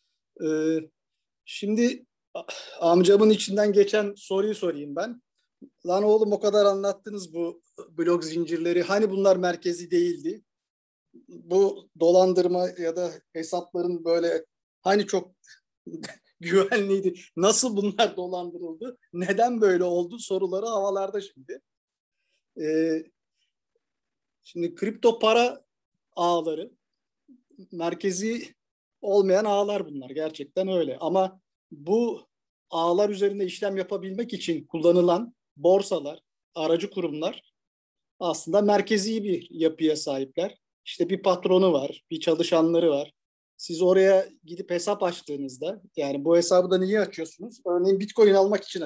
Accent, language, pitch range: native, Turkish, 175-215 Hz